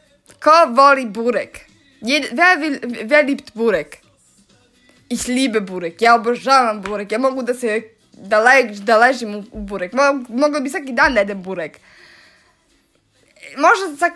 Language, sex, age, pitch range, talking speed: German, female, 20-39, 220-280 Hz, 135 wpm